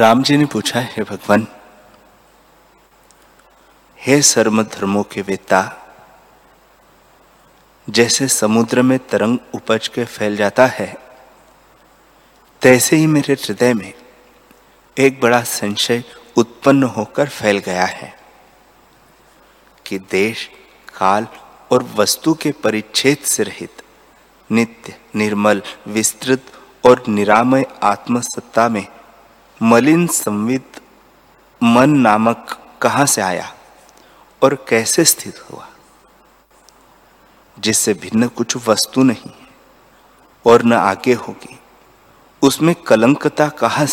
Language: Hindi